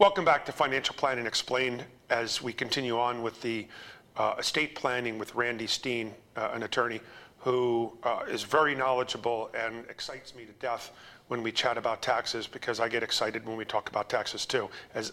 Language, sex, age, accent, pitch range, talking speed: English, male, 40-59, American, 120-155 Hz, 185 wpm